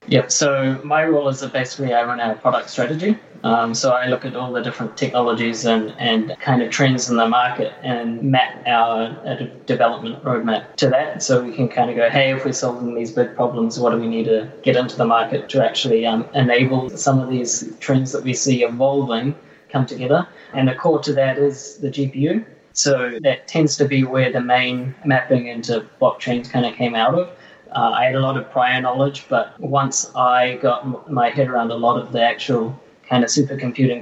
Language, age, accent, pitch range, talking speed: English, 20-39, Australian, 120-140 Hz, 210 wpm